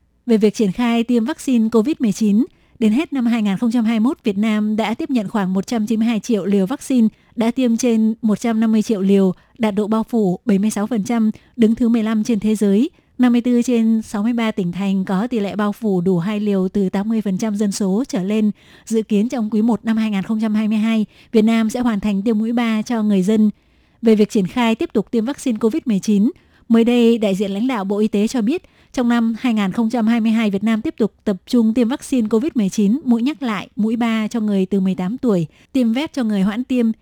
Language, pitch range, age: Vietnamese, 205-235 Hz, 20-39